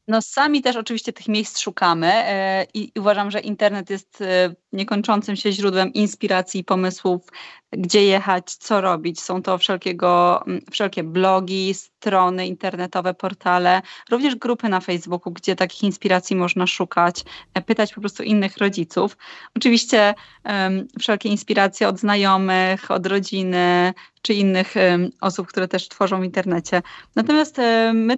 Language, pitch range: Polish, 185-230 Hz